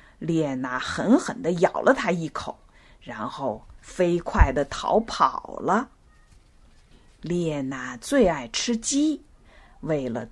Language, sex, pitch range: Chinese, female, 140-225 Hz